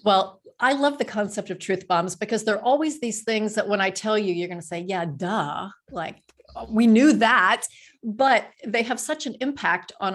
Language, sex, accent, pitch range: English, female, American, 180-220 Hz